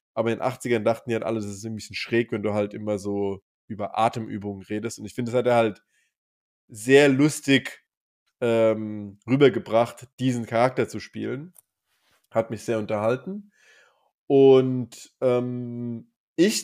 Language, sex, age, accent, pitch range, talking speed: German, male, 20-39, German, 115-135 Hz, 155 wpm